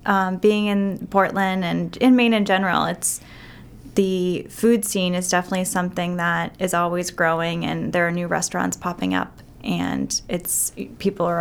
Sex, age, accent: female, 10-29, American